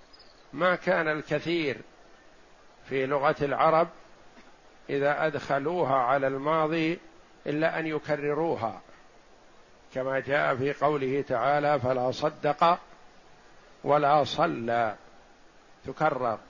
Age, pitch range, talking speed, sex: 50-69, 145-170 Hz, 85 wpm, male